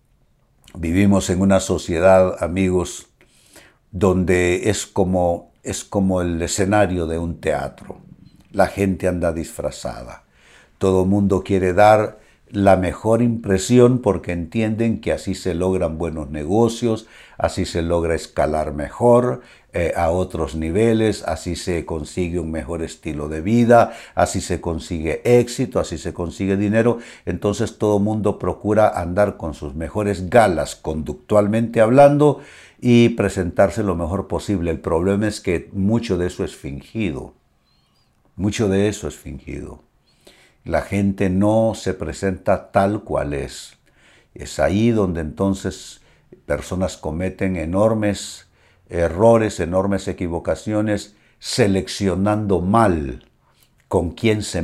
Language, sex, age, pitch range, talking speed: Spanish, male, 60-79, 85-110 Hz, 125 wpm